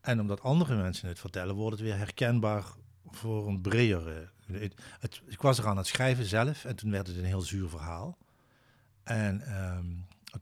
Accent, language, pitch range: Dutch, Dutch, 95-115 Hz